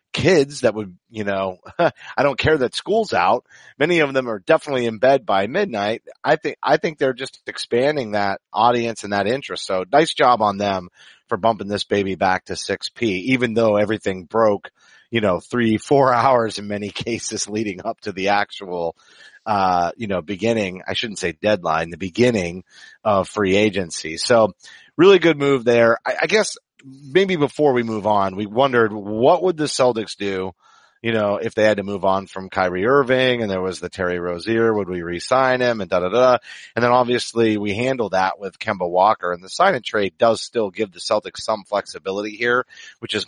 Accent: American